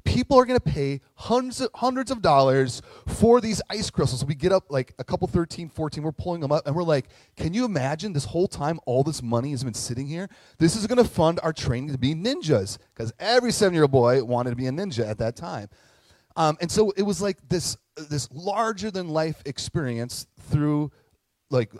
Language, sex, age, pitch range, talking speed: English, male, 30-49, 125-175 Hz, 210 wpm